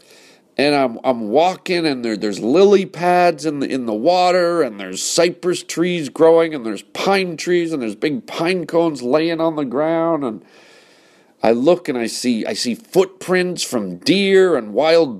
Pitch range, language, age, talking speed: 115-170 Hz, English, 50-69, 180 wpm